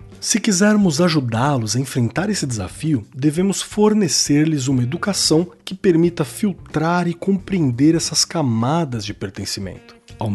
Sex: male